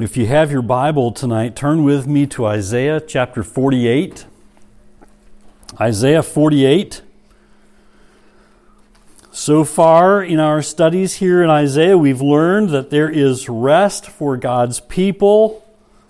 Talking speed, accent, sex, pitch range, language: 120 wpm, American, male, 135-185 Hz, English